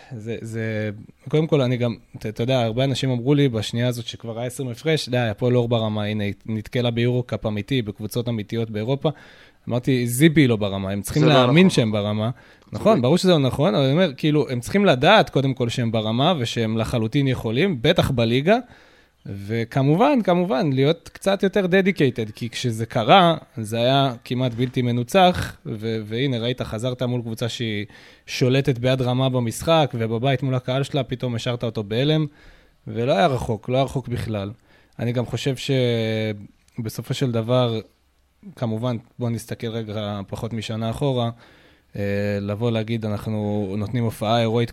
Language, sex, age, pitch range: Hebrew, male, 20-39, 110-135 Hz